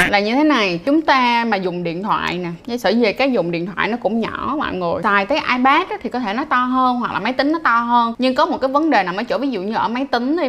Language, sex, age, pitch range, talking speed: Vietnamese, female, 20-39, 205-280 Hz, 315 wpm